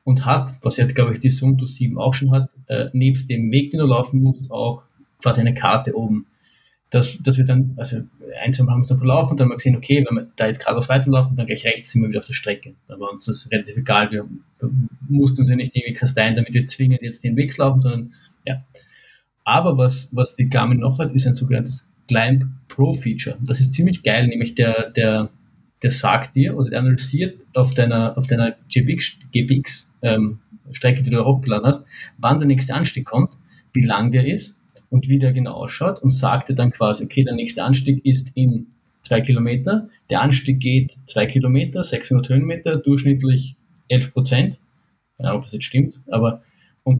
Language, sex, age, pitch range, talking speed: German, male, 20-39, 120-135 Hz, 205 wpm